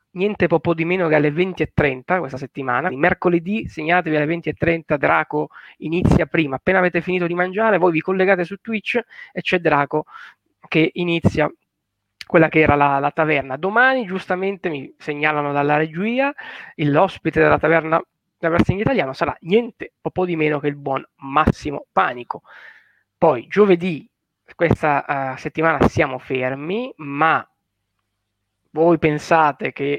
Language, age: Italian, 20-39